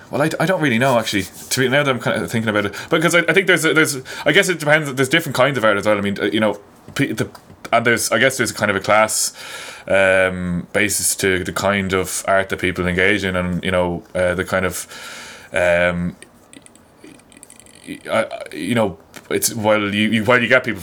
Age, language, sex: 20-39, English, male